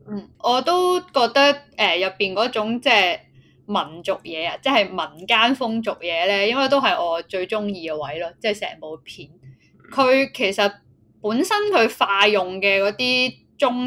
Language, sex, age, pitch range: Chinese, female, 20-39, 175-240 Hz